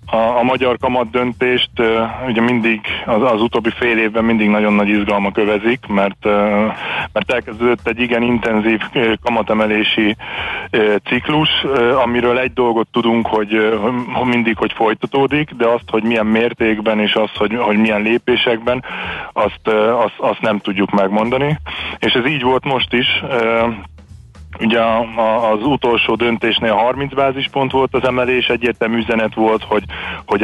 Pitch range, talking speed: 110-125 Hz, 150 wpm